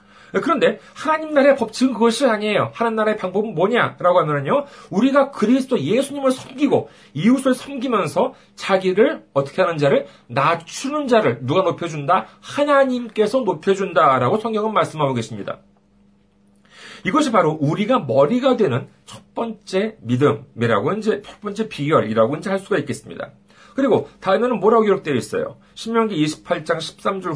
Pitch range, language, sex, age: 160-230 Hz, Korean, male, 40-59